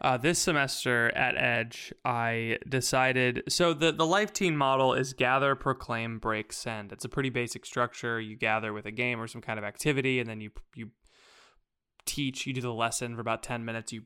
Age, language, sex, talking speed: 20-39, English, male, 200 wpm